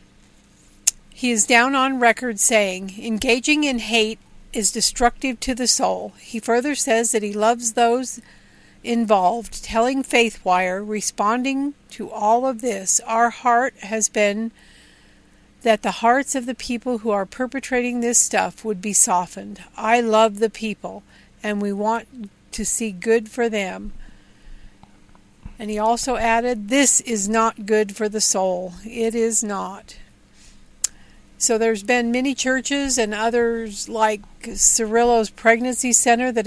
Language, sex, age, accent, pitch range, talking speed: English, female, 50-69, American, 210-245 Hz, 140 wpm